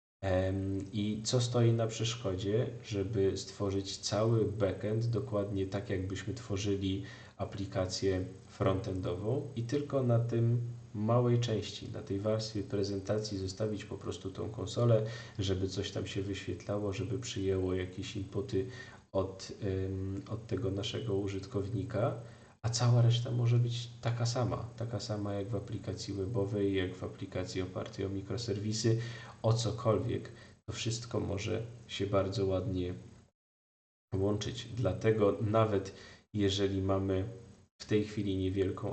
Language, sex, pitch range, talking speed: Polish, male, 100-115 Hz, 120 wpm